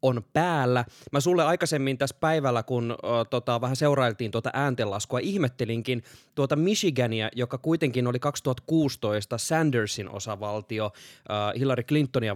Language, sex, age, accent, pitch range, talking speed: Finnish, male, 20-39, native, 115-145 Hz, 110 wpm